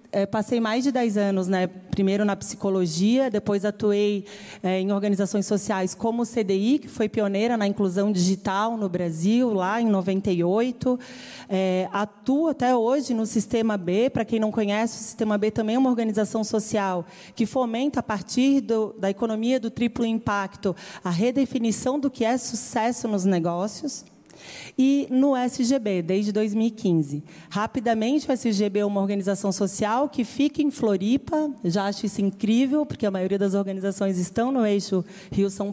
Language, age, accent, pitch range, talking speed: Portuguese, 30-49, Brazilian, 195-240 Hz, 155 wpm